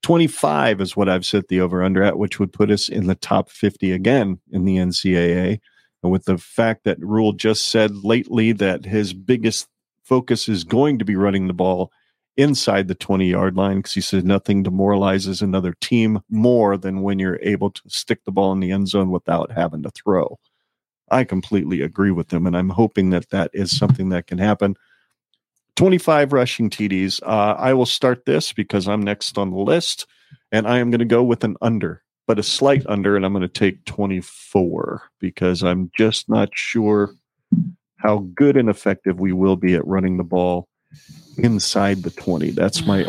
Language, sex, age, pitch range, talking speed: English, male, 40-59, 95-110 Hz, 190 wpm